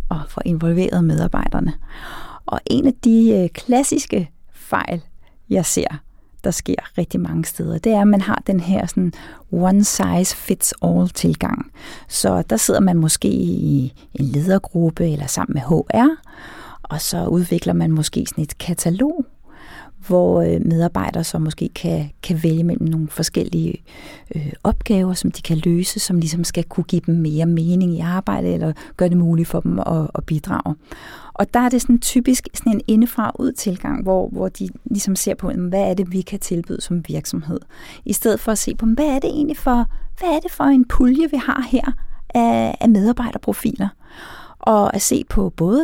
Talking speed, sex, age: 175 wpm, female, 30-49